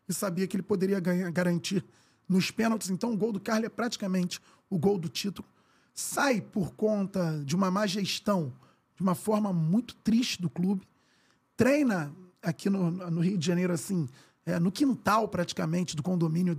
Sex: male